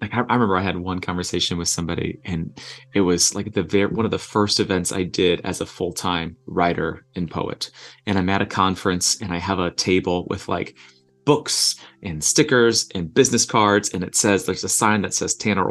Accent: American